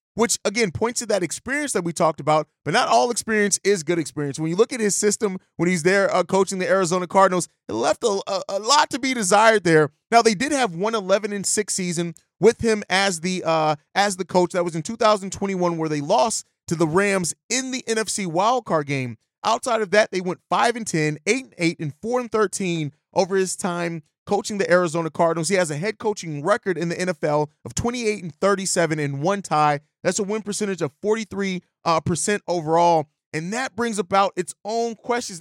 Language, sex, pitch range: English, male, 170-215 Hz